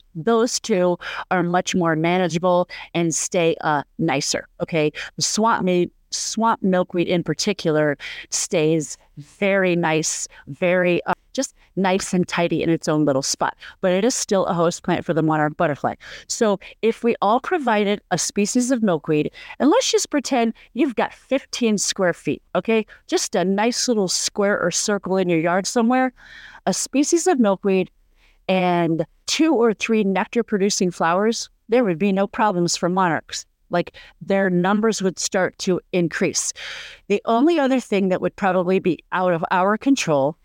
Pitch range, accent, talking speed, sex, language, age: 175-225 Hz, American, 160 wpm, female, English, 40-59